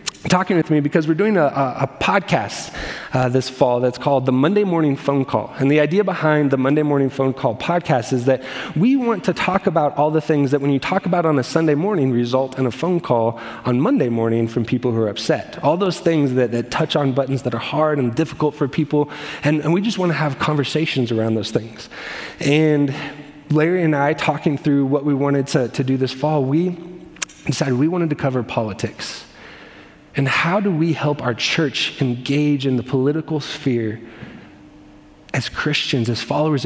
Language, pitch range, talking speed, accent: English, 130-160 Hz, 205 wpm, American